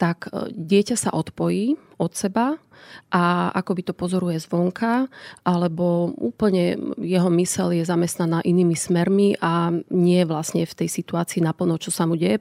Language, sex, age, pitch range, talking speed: Slovak, female, 30-49, 170-195 Hz, 150 wpm